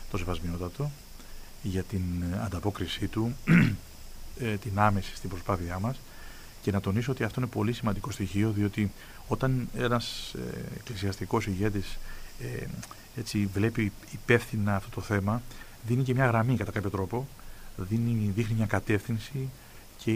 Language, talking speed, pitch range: Greek, 135 wpm, 95-115 Hz